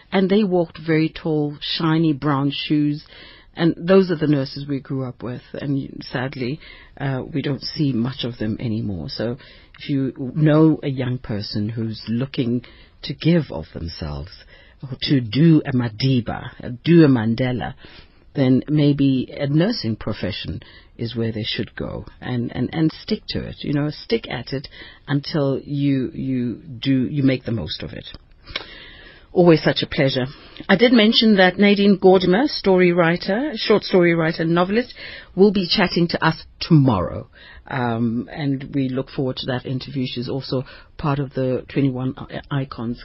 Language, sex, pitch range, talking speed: English, female, 120-155 Hz, 165 wpm